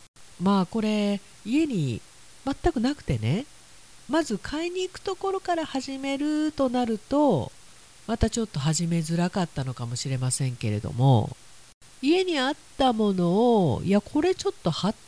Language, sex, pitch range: Japanese, female, 130-215 Hz